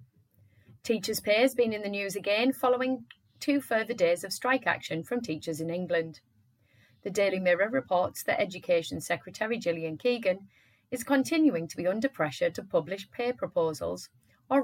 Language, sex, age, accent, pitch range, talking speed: English, female, 30-49, British, 155-230 Hz, 160 wpm